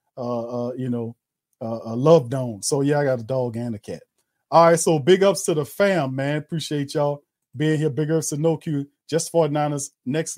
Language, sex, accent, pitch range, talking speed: English, male, American, 140-175 Hz, 225 wpm